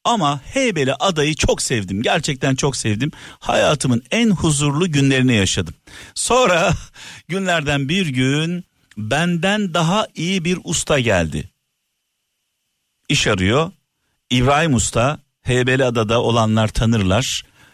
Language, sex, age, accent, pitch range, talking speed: Turkish, male, 50-69, native, 110-160 Hz, 105 wpm